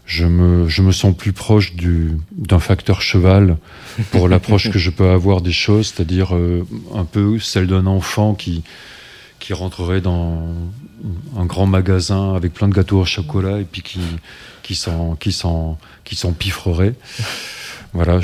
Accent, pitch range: French, 90-105 Hz